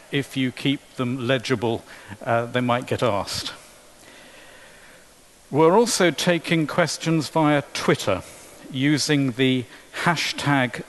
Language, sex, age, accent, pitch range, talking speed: English, male, 50-69, British, 125-150 Hz, 105 wpm